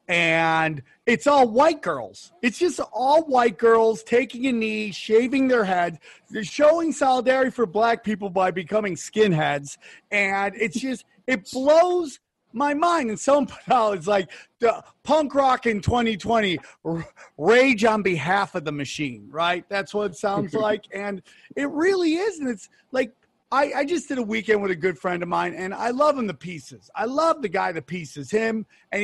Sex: male